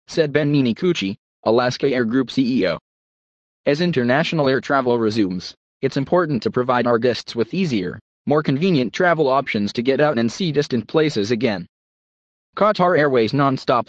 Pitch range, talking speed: 115-155 Hz, 150 wpm